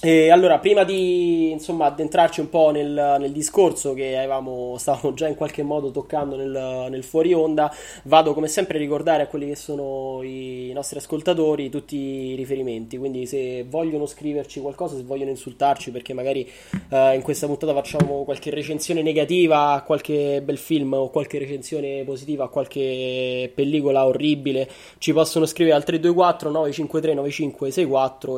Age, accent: 20-39, native